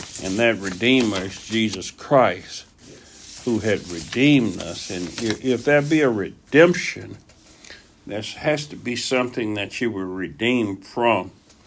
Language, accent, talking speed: English, American, 135 wpm